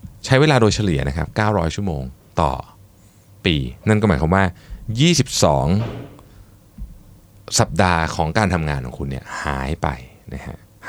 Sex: male